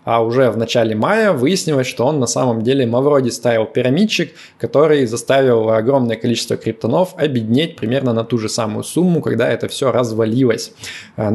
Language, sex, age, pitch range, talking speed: Russian, male, 20-39, 115-135 Hz, 160 wpm